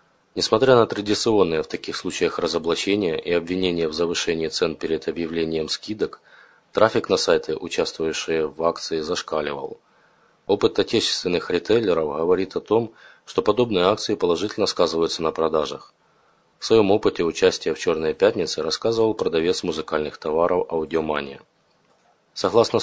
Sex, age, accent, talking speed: male, 20-39, native, 125 wpm